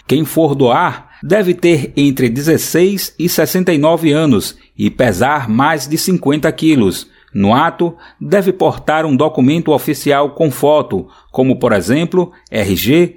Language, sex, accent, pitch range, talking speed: Portuguese, male, Brazilian, 140-165 Hz, 130 wpm